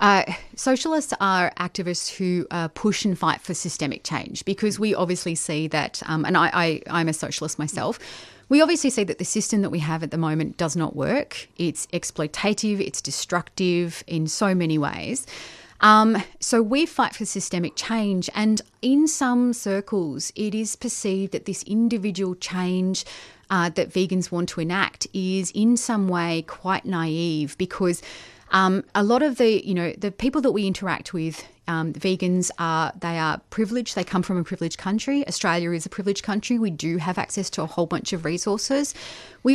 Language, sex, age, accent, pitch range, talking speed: English, female, 30-49, Australian, 170-215 Hz, 180 wpm